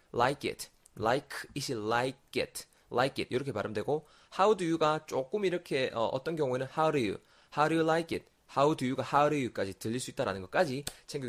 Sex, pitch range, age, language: male, 115-175 Hz, 20-39, Korean